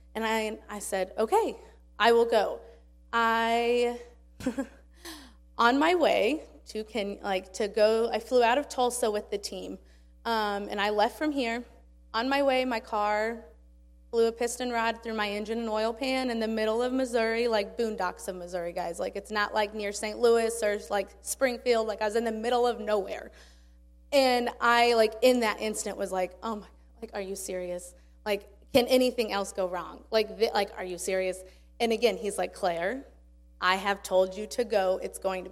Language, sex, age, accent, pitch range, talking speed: English, female, 20-39, American, 200-250 Hz, 195 wpm